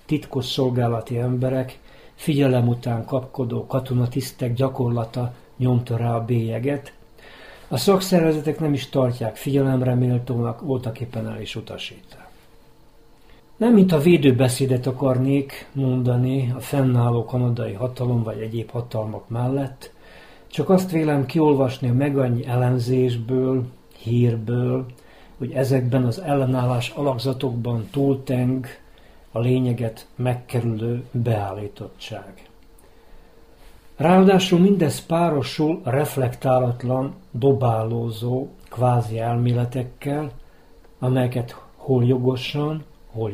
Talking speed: 90 wpm